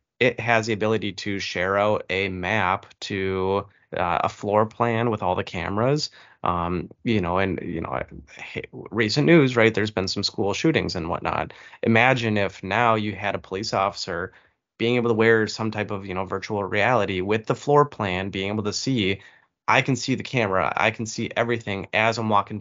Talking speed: 195 wpm